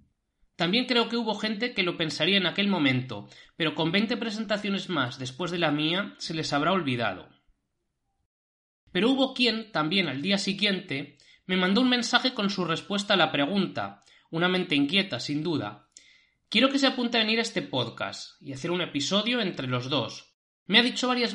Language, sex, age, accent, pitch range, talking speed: Spanish, male, 30-49, Spanish, 160-230 Hz, 185 wpm